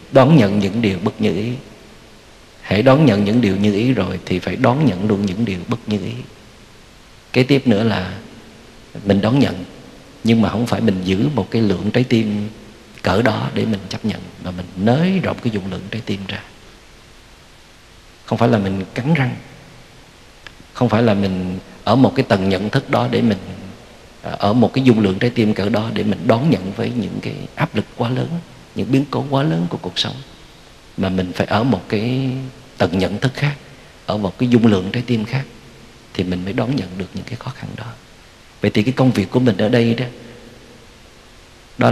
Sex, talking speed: male, 210 wpm